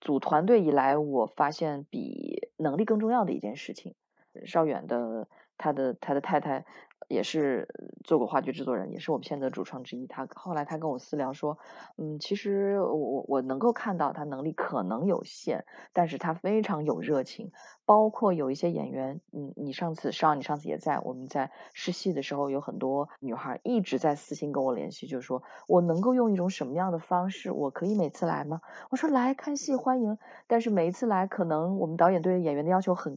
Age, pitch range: 20-39, 145-200 Hz